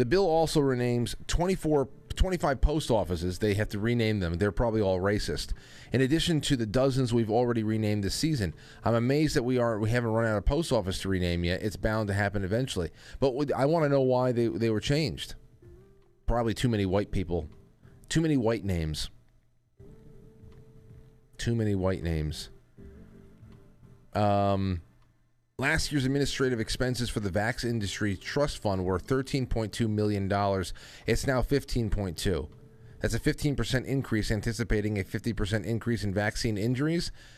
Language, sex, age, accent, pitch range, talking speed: English, male, 30-49, American, 100-130 Hz, 155 wpm